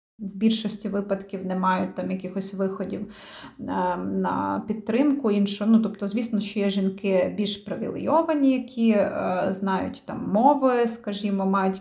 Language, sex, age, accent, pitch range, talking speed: Ukrainian, female, 30-49, native, 200-225 Hz, 135 wpm